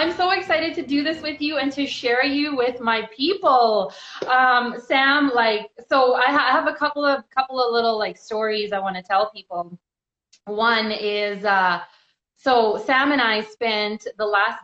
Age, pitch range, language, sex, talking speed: 20-39, 205-280 Hz, English, female, 190 wpm